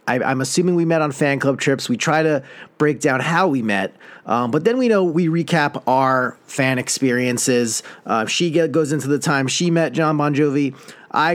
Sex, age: male, 40-59